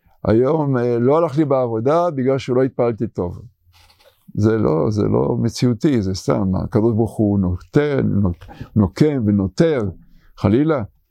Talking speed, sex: 125 wpm, male